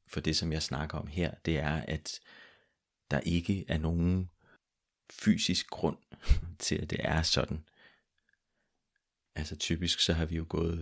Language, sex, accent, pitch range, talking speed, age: Danish, male, native, 80-85 Hz, 155 wpm, 30-49